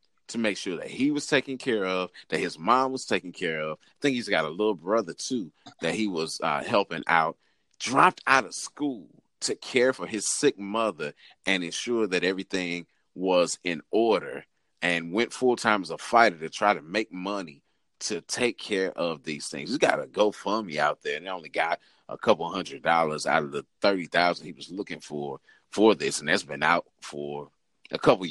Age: 30-49